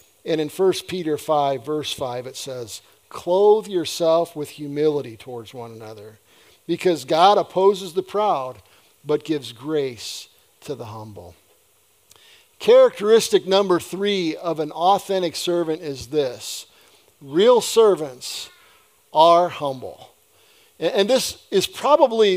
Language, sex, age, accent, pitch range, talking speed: English, male, 50-69, American, 155-235 Hz, 120 wpm